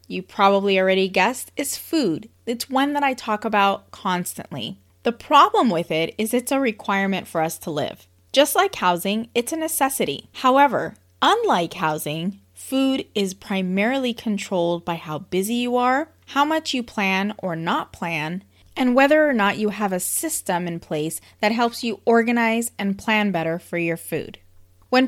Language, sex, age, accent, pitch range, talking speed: English, female, 20-39, American, 175-245 Hz, 170 wpm